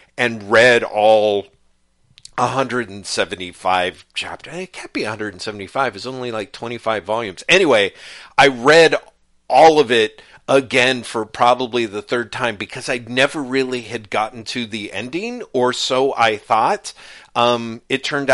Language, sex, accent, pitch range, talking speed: English, male, American, 105-125 Hz, 135 wpm